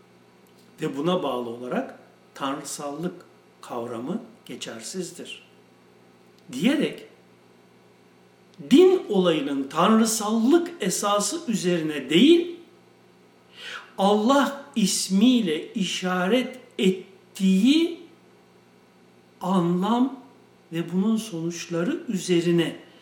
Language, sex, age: Turkish, male, 60-79